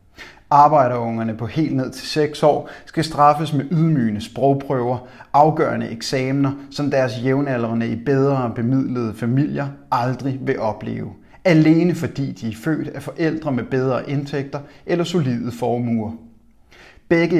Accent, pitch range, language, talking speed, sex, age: native, 120-150 Hz, Danish, 130 wpm, male, 30-49